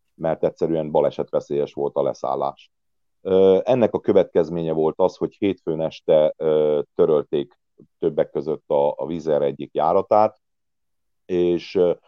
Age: 40-59